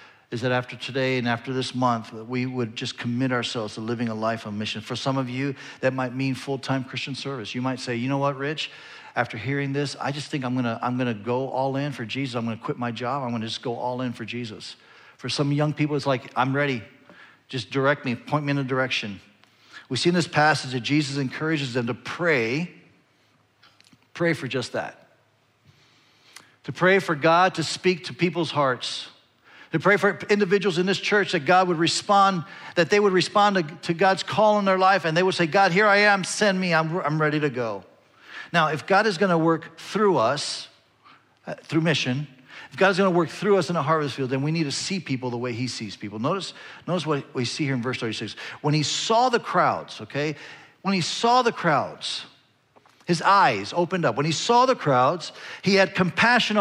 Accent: American